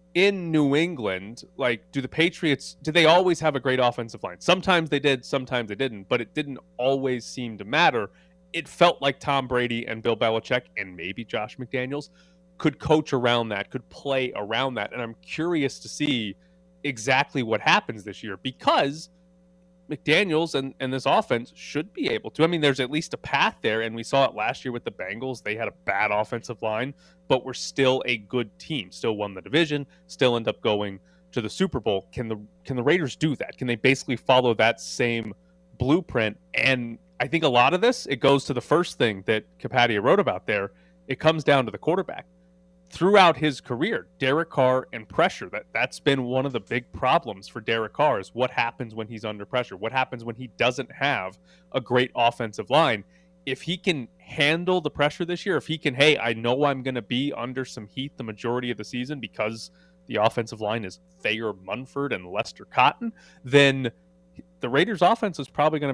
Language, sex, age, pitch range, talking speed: English, male, 30-49, 115-155 Hz, 205 wpm